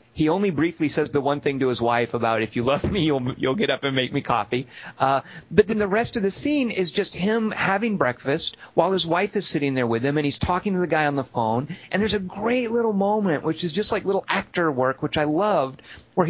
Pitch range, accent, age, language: 150-200 Hz, American, 40-59, English